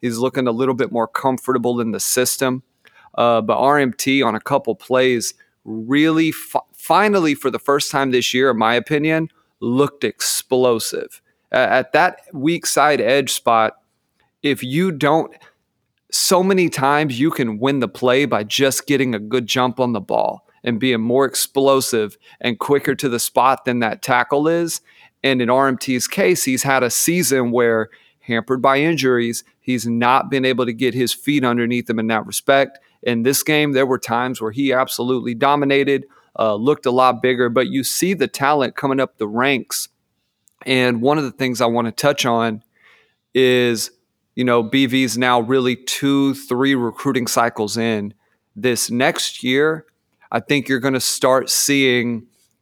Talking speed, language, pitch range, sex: 170 wpm, English, 120-140 Hz, male